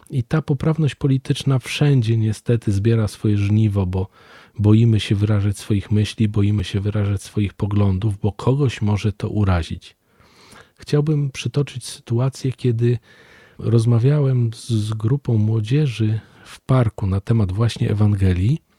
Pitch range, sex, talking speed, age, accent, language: 100-120 Hz, male, 125 wpm, 40-59, native, Polish